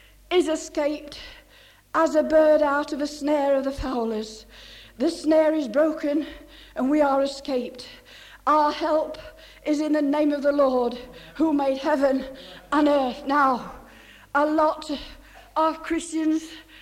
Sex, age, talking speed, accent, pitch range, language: female, 60-79, 140 wpm, British, 295-395 Hz, English